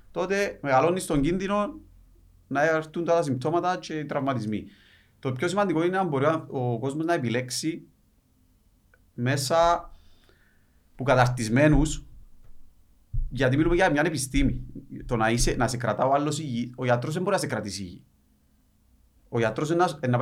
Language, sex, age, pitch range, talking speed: Greek, male, 30-49, 120-155 Hz, 135 wpm